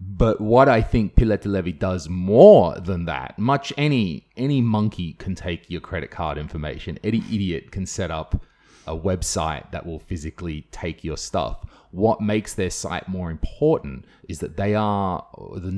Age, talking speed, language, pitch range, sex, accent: 30-49, 165 wpm, English, 80-100 Hz, male, Australian